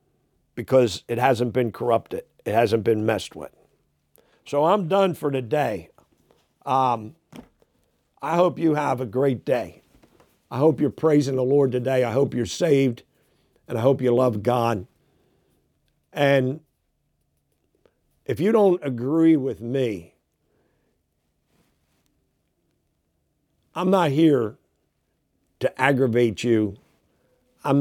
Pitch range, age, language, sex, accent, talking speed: 110-145 Hz, 50-69, English, male, American, 115 wpm